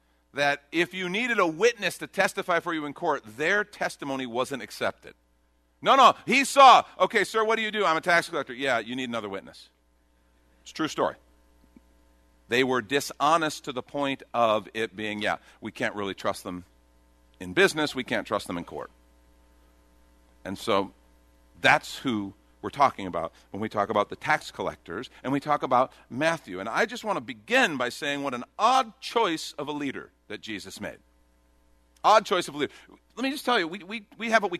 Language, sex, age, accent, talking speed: English, male, 50-69, American, 195 wpm